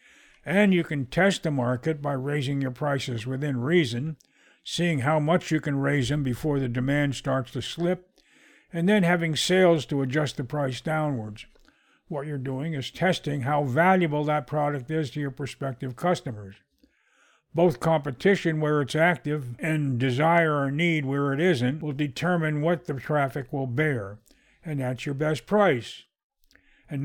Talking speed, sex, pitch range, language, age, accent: 160 wpm, male, 135-165 Hz, English, 60-79, American